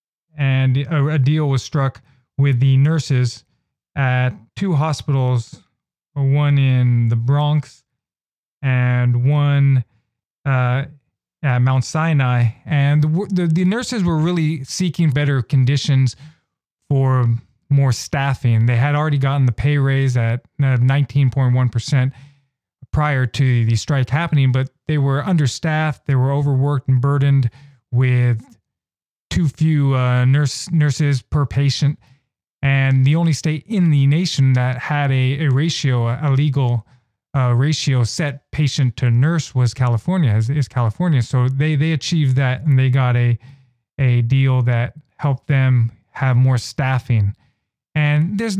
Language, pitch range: English, 125-150 Hz